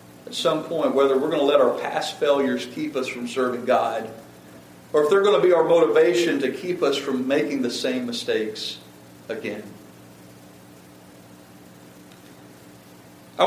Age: 40-59